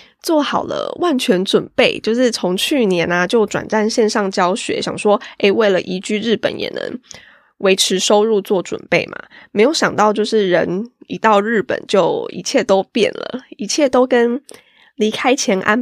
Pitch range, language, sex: 190-250 Hz, Chinese, female